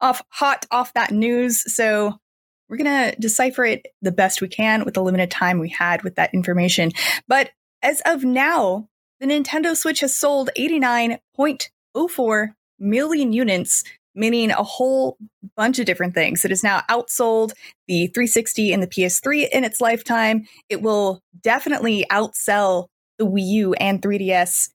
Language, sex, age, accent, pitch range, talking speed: English, female, 20-39, American, 190-255 Hz, 155 wpm